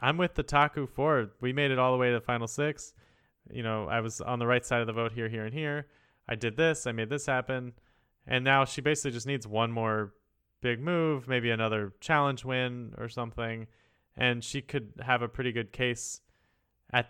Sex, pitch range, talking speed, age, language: male, 115-140 Hz, 215 wpm, 20-39, English